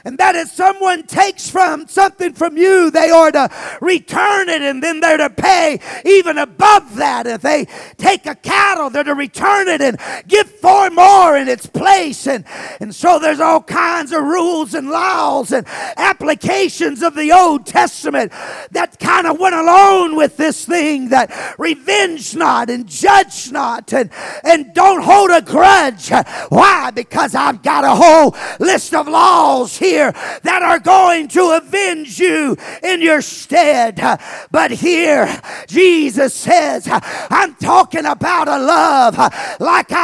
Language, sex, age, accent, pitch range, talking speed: English, male, 50-69, American, 305-370 Hz, 155 wpm